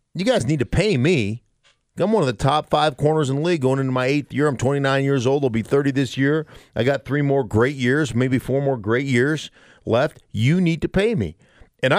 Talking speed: 240 wpm